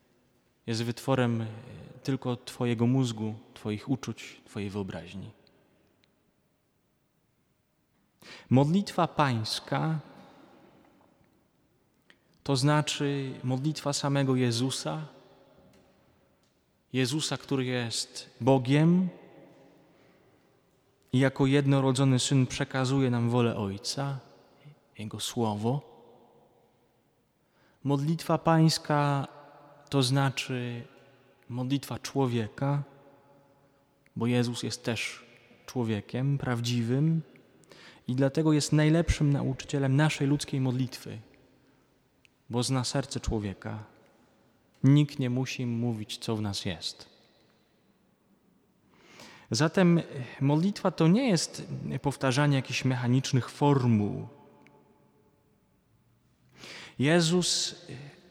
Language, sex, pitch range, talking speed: Polish, male, 120-145 Hz, 75 wpm